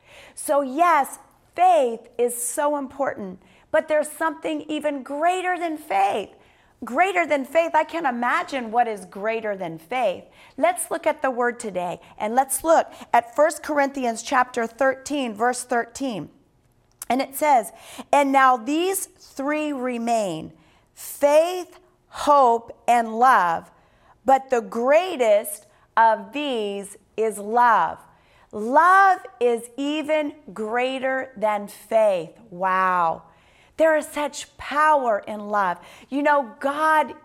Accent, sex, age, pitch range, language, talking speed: American, female, 40-59, 220-300 Hz, English, 120 wpm